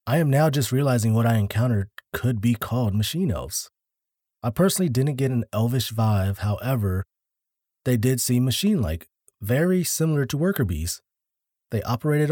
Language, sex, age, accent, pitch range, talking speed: English, male, 20-39, American, 105-130 Hz, 155 wpm